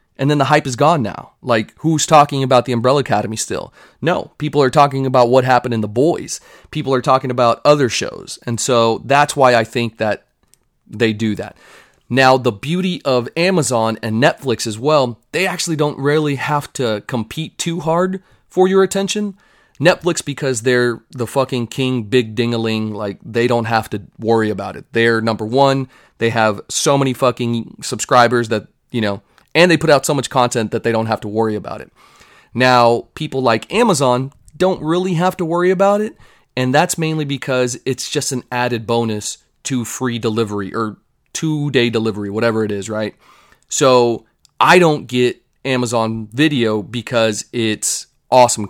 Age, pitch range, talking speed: 30-49, 115-145 Hz, 175 wpm